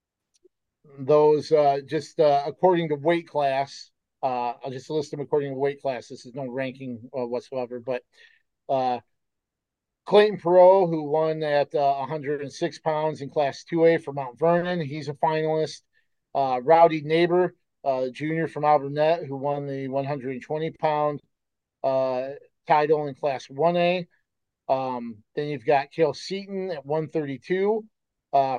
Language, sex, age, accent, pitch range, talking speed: English, male, 40-59, American, 135-160 Hz, 135 wpm